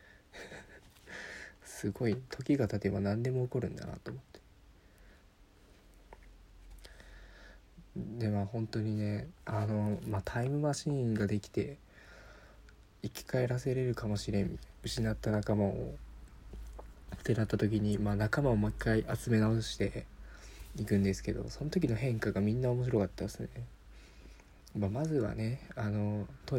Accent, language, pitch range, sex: native, Japanese, 100-115 Hz, male